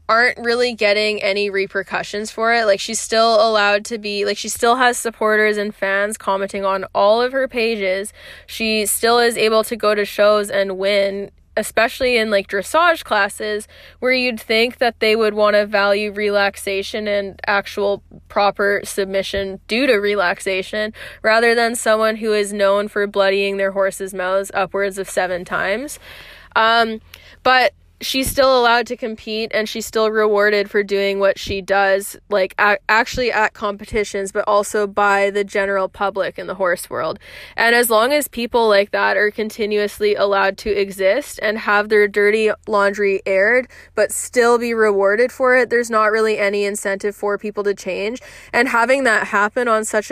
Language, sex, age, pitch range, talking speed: English, female, 20-39, 200-225 Hz, 170 wpm